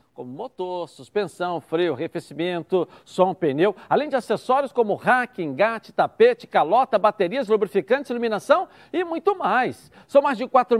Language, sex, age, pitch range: Portuguese, male, 60-79, 195-270 Hz